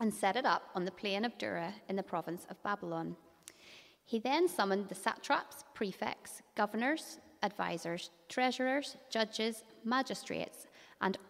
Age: 30-49